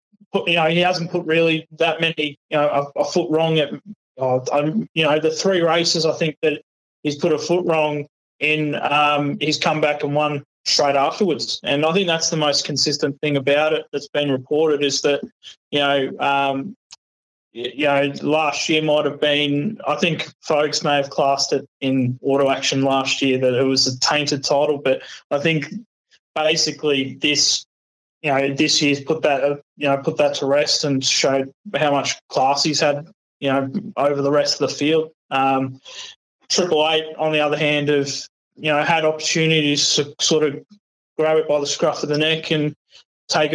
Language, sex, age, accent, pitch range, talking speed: English, male, 20-39, Australian, 140-155 Hz, 195 wpm